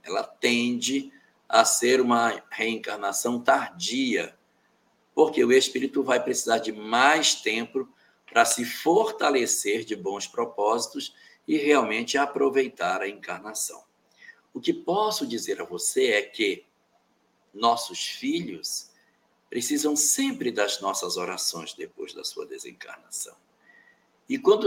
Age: 60-79